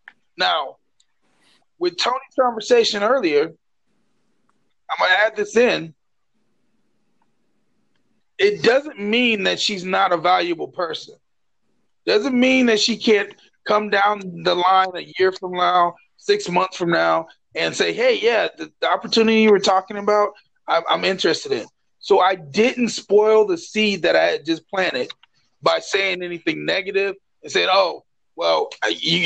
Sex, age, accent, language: male, 30-49, American, English